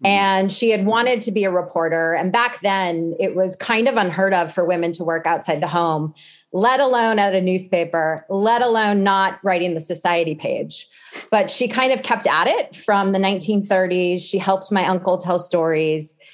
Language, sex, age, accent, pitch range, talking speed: English, female, 30-49, American, 175-215 Hz, 190 wpm